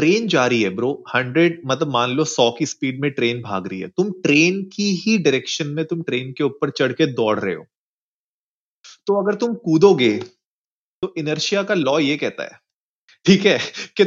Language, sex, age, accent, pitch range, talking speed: Hindi, male, 20-39, native, 130-170 Hz, 90 wpm